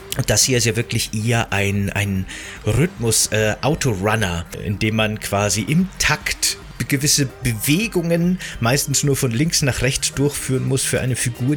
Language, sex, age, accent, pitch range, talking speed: German, male, 30-49, German, 110-135 Hz, 155 wpm